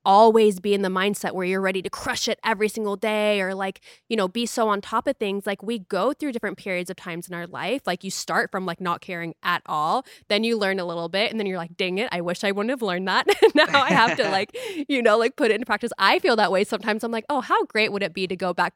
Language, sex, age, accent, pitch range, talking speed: English, female, 20-39, American, 185-235 Hz, 290 wpm